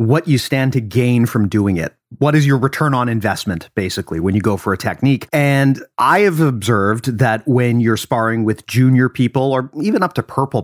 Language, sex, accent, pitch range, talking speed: English, male, American, 110-140 Hz, 210 wpm